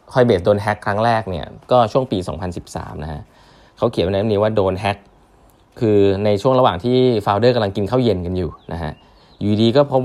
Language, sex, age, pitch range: Thai, male, 20-39, 90-115 Hz